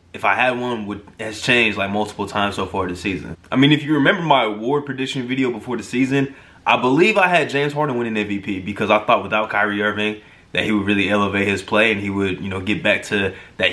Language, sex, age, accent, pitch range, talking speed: English, male, 20-39, American, 100-125 Hz, 245 wpm